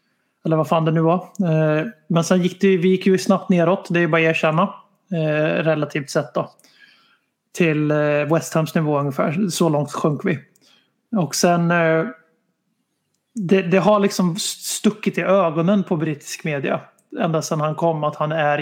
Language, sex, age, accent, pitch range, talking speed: Swedish, male, 30-49, native, 155-180 Hz, 170 wpm